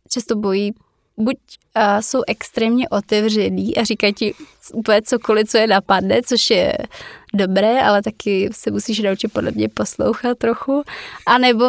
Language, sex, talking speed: Slovak, female, 140 wpm